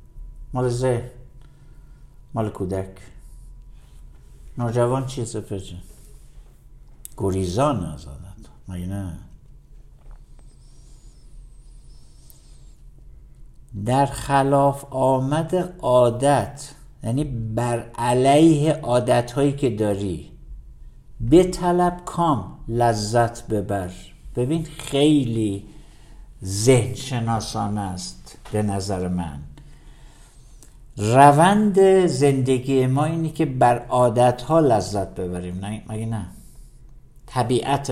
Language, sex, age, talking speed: Persian, male, 60-79, 80 wpm